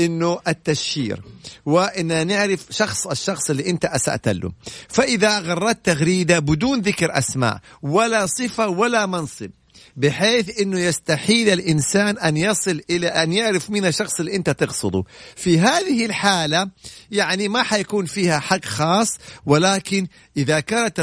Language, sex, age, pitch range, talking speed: English, male, 50-69, 150-205 Hz, 130 wpm